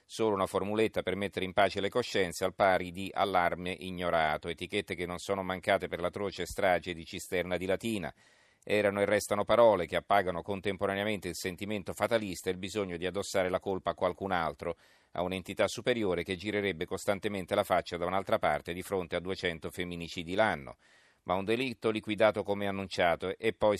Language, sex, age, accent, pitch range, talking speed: Italian, male, 40-59, native, 90-105 Hz, 180 wpm